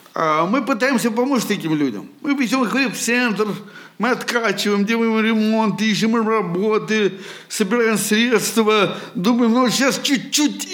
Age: 60-79